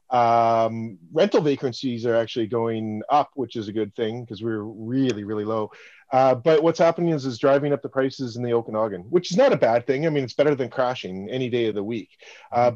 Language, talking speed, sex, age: English, 225 wpm, male, 30-49